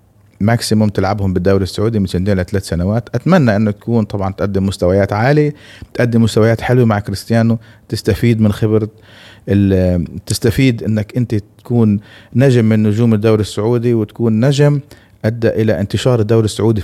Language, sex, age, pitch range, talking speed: Arabic, male, 30-49, 100-125 Hz, 140 wpm